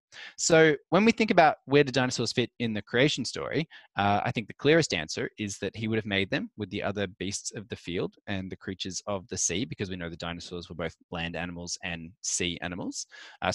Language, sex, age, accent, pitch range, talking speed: English, male, 20-39, Australian, 100-130 Hz, 230 wpm